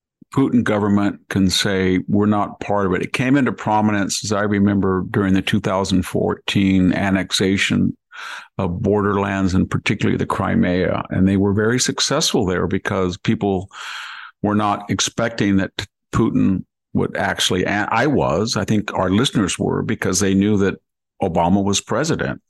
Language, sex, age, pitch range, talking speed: English, male, 50-69, 95-110 Hz, 145 wpm